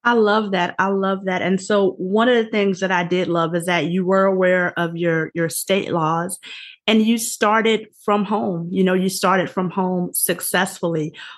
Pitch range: 180-225 Hz